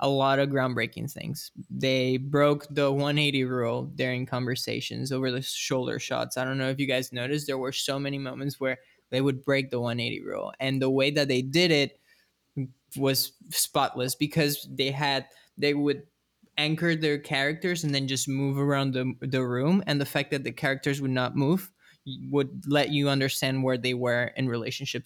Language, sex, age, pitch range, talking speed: English, male, 20-39, 130-150 Hz, 185 wpm